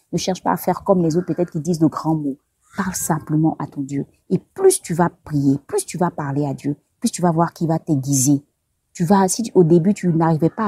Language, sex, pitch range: French, female, 150-195 Hz